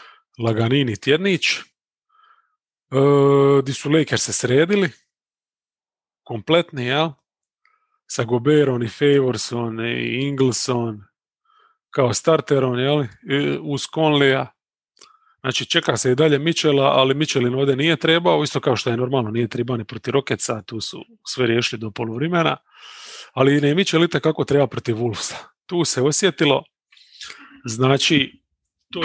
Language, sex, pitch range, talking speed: English, male, 120-155 Hz, 125 wpm